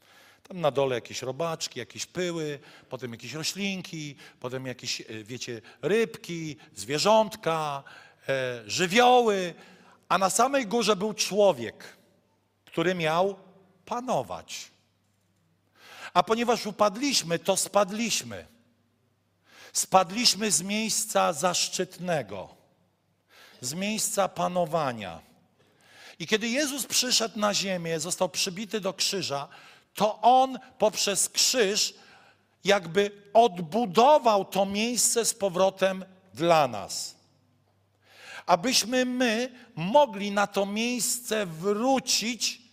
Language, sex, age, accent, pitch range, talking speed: Polish, male, 50-69, native, 145-210 Hz, 95 wpm